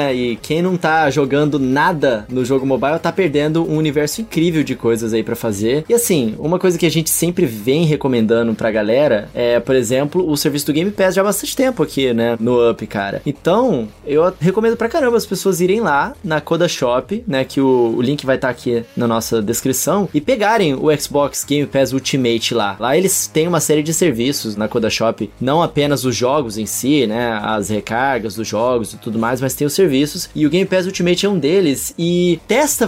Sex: male